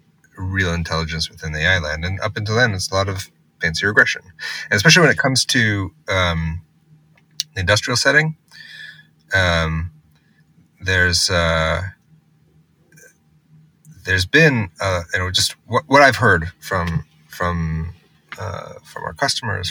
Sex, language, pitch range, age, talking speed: male, English, 85-120 Hz, 30-49, 135 wpm